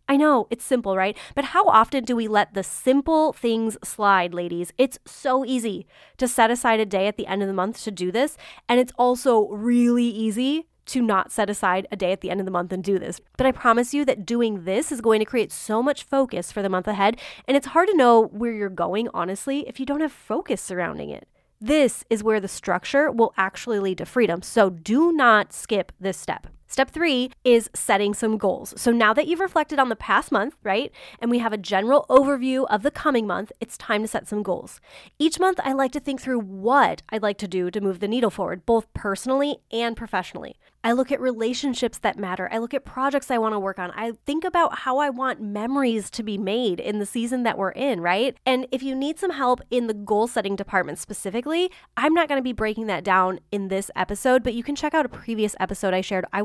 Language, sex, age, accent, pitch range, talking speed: English, female, 20-39, American, 200-265 Hz, 235 wpm